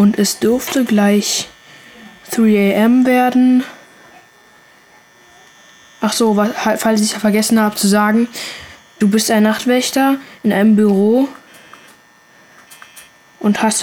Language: German